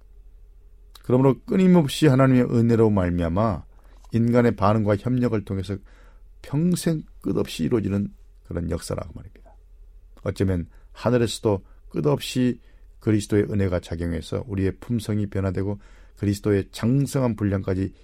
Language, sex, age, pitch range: Korean, male, 40-59, 85-125 Hz